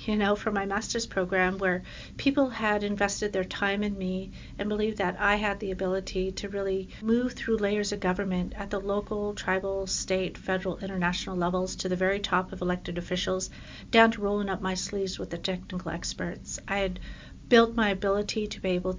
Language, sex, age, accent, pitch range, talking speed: English, female, 50-69, American, 185-205 Hz, 195 wpm